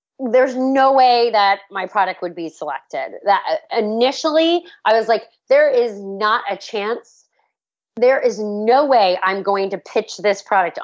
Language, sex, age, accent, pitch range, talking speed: English, female, 30-49, American, 185-225 Hz, 160 wpm